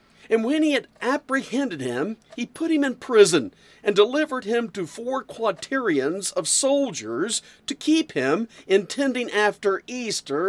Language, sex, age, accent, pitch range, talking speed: English, male, 50-69, American, 155-240 Hz, 145 wpm